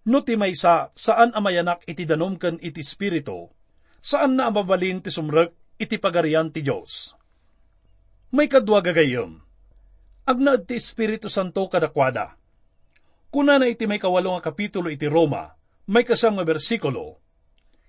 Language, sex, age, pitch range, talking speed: English, male, 50-69, 140-220 Hz, 105 wpm